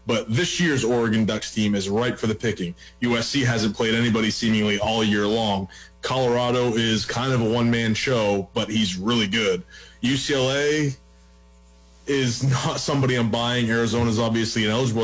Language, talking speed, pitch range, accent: English, 155 wpm, 105-130 Hz, American